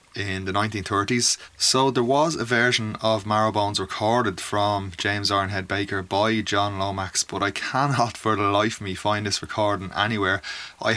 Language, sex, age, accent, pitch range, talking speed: English, male, 20-39, Irish, 100-115 Hz, 170 wpm